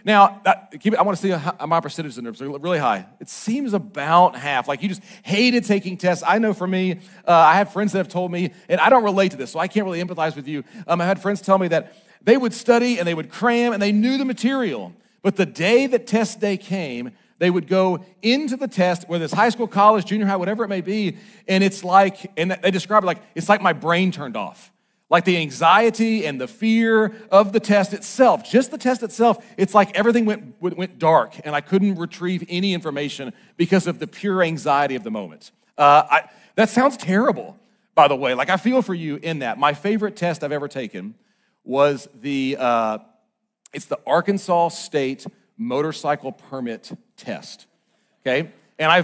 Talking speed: 210 wpm